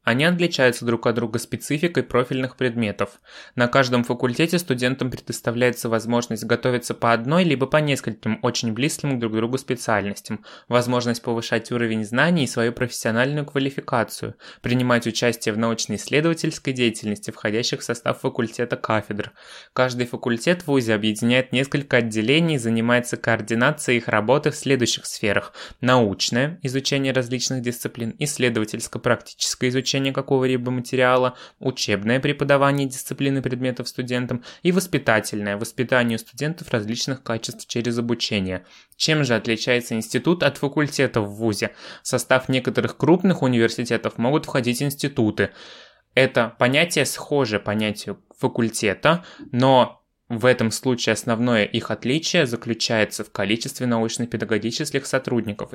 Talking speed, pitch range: 125 wpm, 115-135 Hz